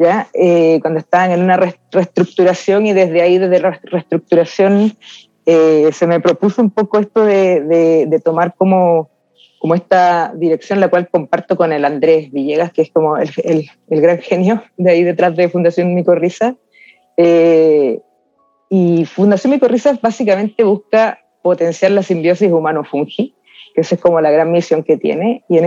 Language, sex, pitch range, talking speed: Spanish, female, 160-190 Hz, 165 wpm